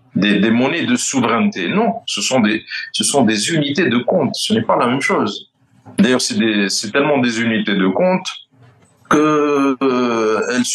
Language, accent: French, French